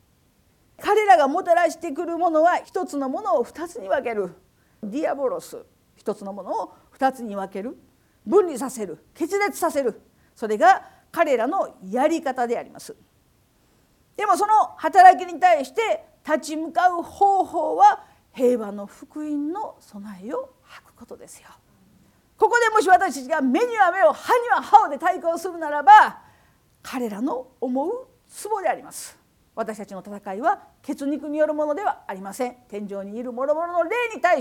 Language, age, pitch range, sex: Japanese, 50-69, 220-355 Hz, female